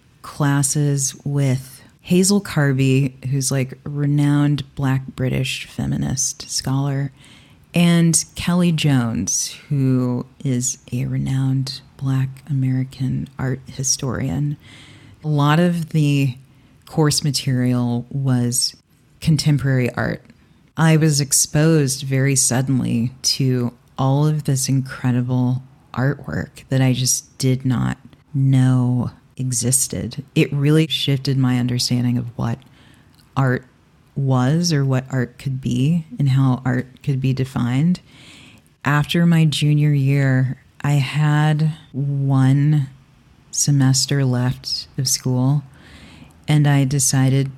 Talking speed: 105 wpm